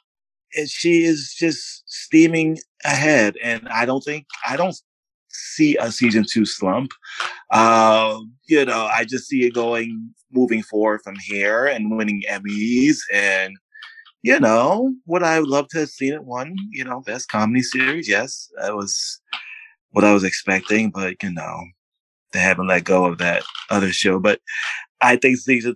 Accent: American